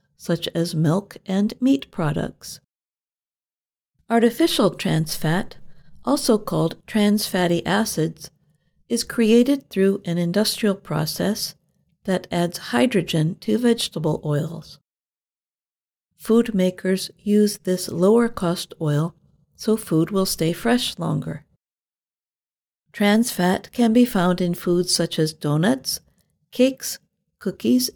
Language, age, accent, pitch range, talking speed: English, 50-69, American, 165-225 Hz, 105 wpm